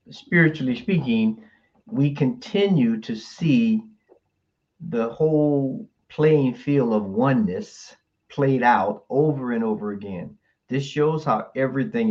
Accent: American